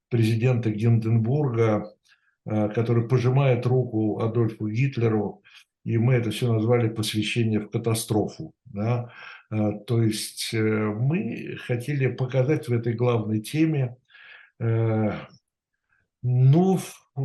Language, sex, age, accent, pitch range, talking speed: Russian, male, 60-79, native, 110-140 Hz, 90 wpm